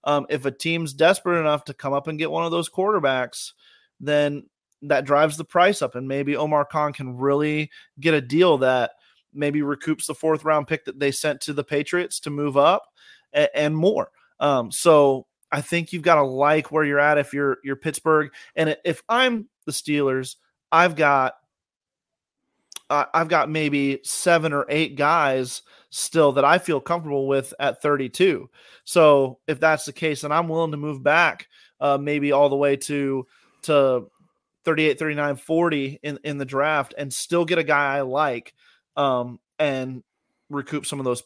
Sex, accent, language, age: male, American, English, 30-49